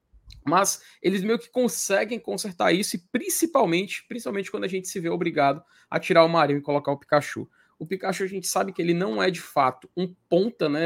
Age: 20-39